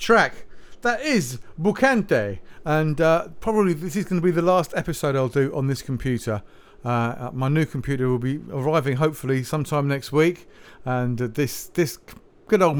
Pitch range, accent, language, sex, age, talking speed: 125-200 Hz, British, English, male, 50-69, 175 wpm